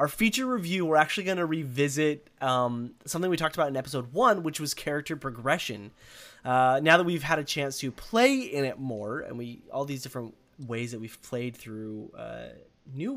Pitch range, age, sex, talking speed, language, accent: 130-175 Hz, 20-39, male, 200 wpm, English, American